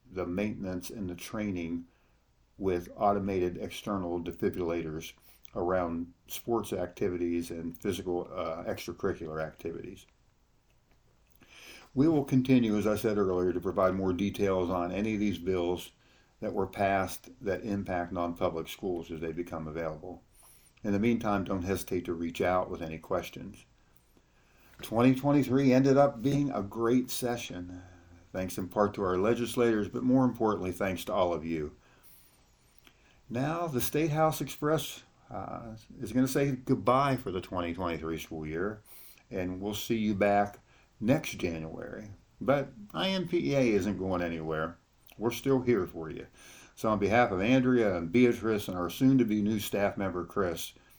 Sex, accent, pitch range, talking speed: male, American, 85-115 Hz, 145 wpm